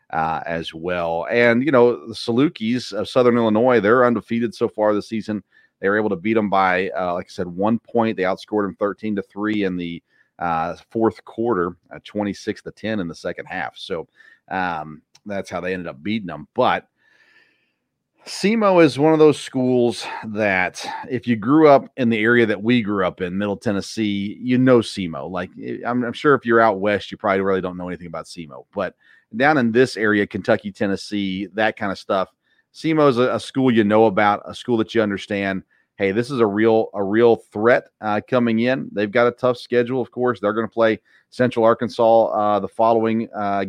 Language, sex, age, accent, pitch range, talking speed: English, male, 40-59, American, 95-120 Hz, 205 wpm